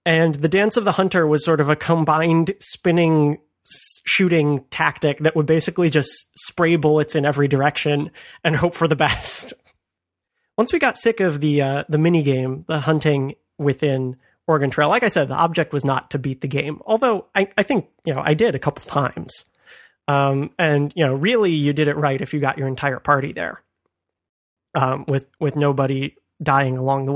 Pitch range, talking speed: 140-170 Hz, 195 wpm